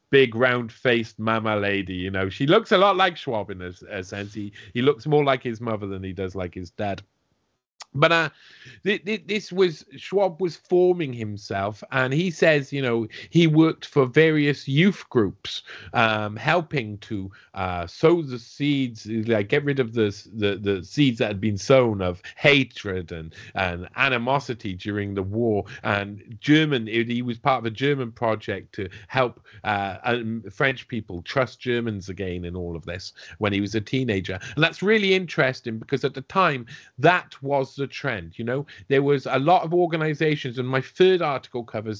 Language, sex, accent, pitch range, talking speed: English, male, British, 105-150 Hz, 185 wpm